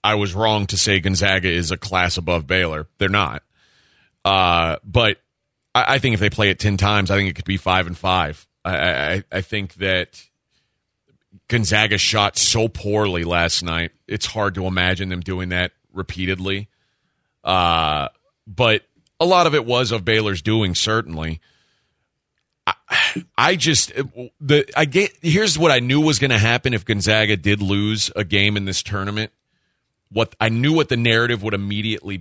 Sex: male